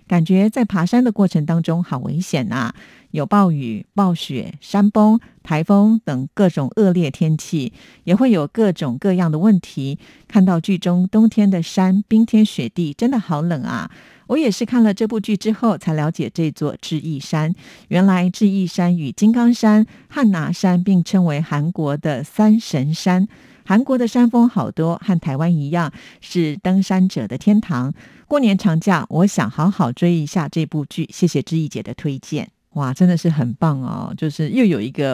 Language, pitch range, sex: Chinese, 150-195 Hz, female